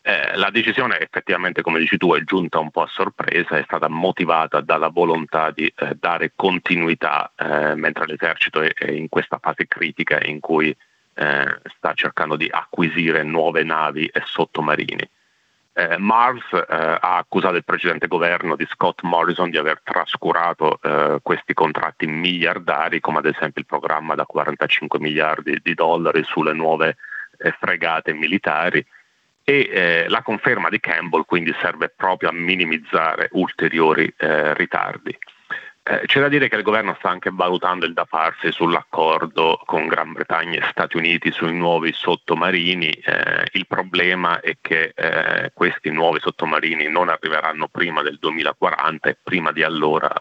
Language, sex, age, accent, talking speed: Italian, male, 30-49, native, 155 wpm